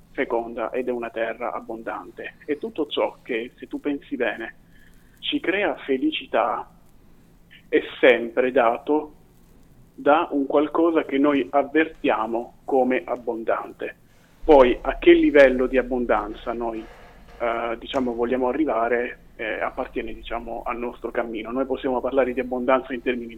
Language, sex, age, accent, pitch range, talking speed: Italian, male, 30-49, native, 120-140 Hz, 135 wpm